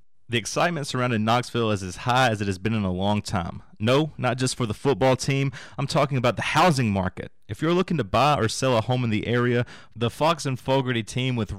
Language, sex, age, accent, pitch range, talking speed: English, male, 30-49, American, 105-135 Hz, 240 wpm